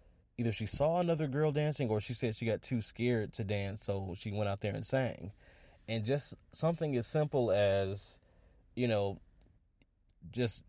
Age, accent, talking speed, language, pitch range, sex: 20-39, American, 175 wpm, English, 100-125 Hz, male